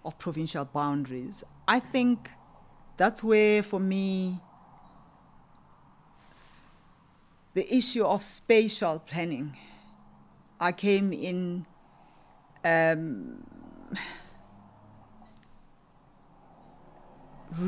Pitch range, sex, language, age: 150-200 Hz, female, English, 40-59